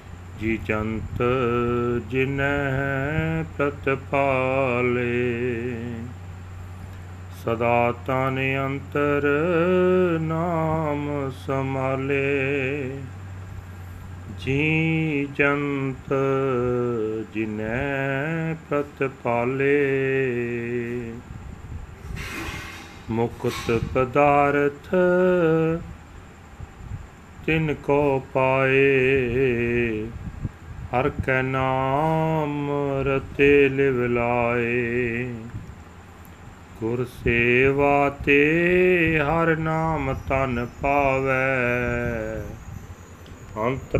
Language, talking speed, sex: Punjabi, 45 wpm, male